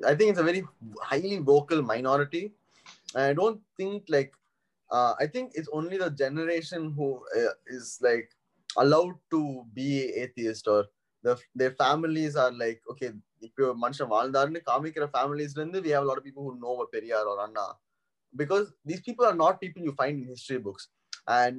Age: 20-39